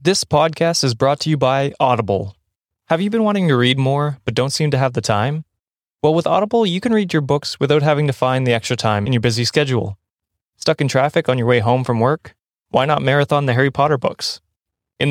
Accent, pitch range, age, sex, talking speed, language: American, 120-150 Hz, 20-39, male, 230 wpm, English